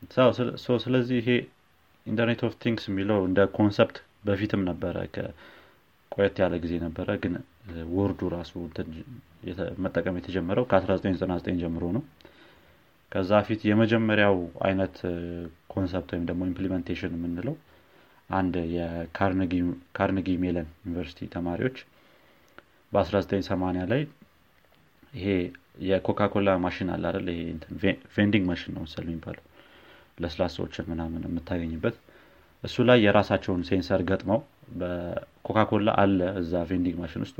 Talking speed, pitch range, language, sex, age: 90 wpm, 85-100 Hz, Amharic, male, 30-49